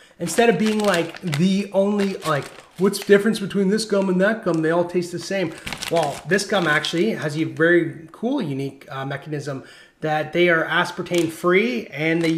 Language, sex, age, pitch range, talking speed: English, male, 30-49, 150-190 Hz, 190 wpm